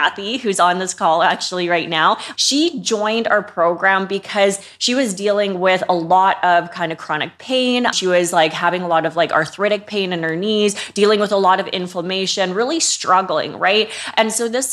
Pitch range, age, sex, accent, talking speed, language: 185-230 Hz, 20-39, female, American, 200 wpm, English